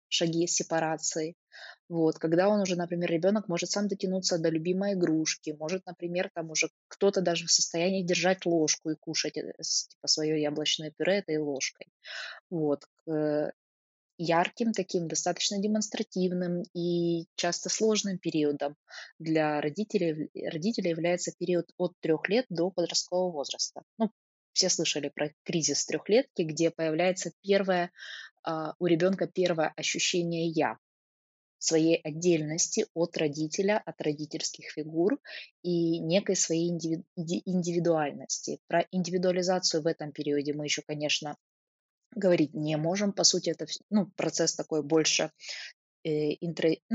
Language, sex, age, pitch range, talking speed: Ukrainian, female, 20-39, 155-185 Hz, 125 wpm